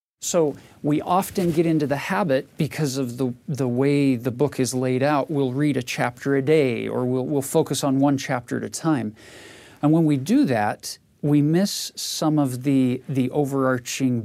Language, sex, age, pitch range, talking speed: English, male, 40-59, 130-155 Hz, 190 wpm